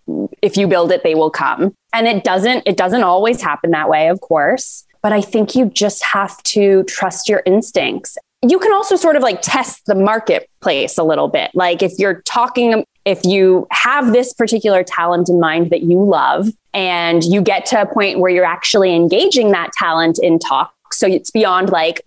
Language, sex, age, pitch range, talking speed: English, female, 20-39, 180-230 Hz, 200 wpm